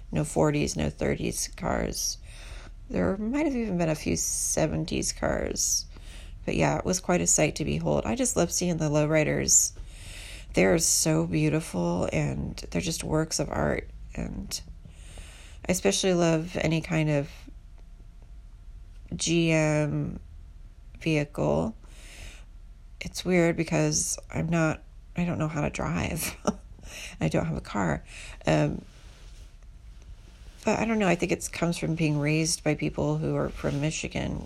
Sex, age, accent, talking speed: female, 30-49, American, 140 wpm